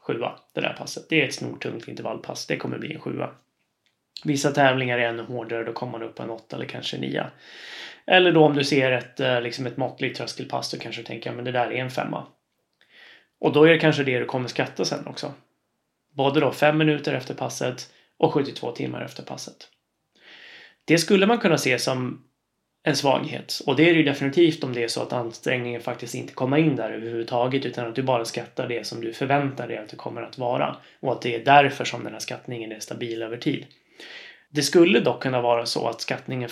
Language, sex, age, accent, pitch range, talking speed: Swedish, male, 20-39, native, 120-150 Hz, 215 wpm